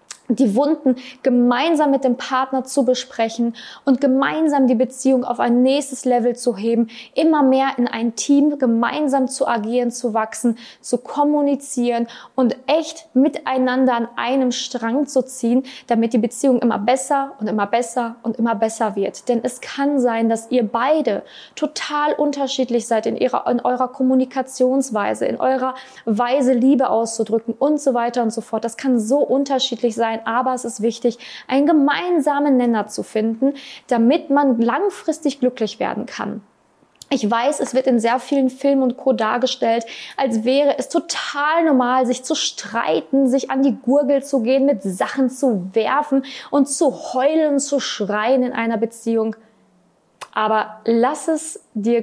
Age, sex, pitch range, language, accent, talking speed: 20-39, female, 230-275 Hz, German, German, 160 wpm